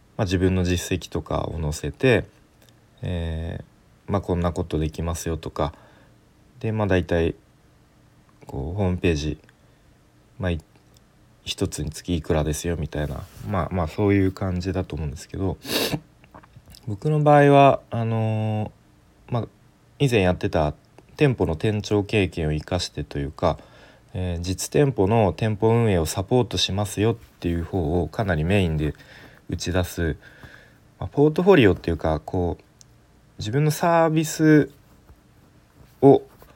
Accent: native